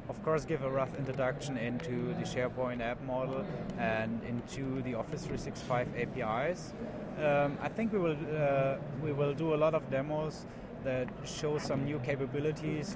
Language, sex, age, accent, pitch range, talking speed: English, male, 30-49, German, 130-150 Hz, 160 wpm